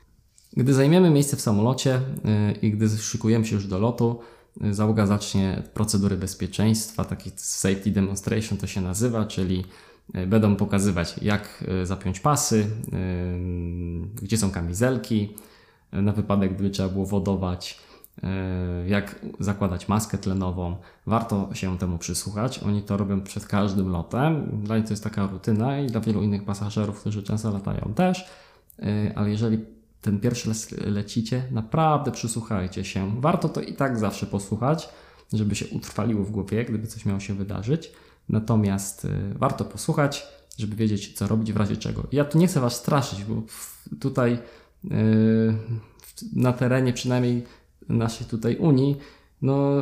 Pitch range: 100-120 Hz